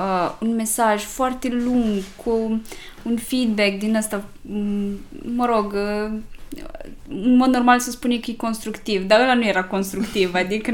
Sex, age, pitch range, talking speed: female, 20-39, 220-300 Hz, 150 wpm